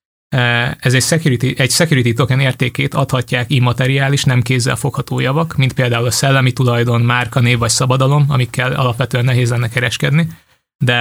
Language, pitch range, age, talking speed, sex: Hungarian, 125-140 Hz, 20-39, 155 wpm, male